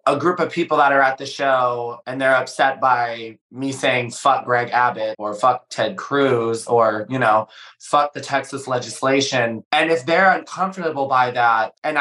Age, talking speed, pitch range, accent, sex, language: 20-39, 180 wpm, 130-185 Hz, American, male, English